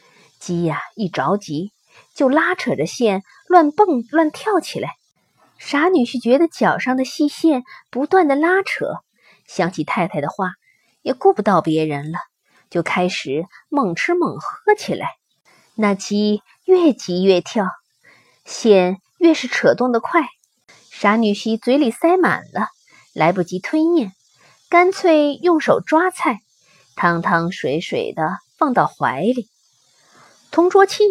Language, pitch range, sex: Chinese, 195-315 Hz, female